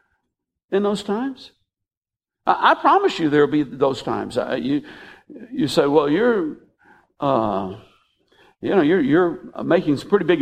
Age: 60-79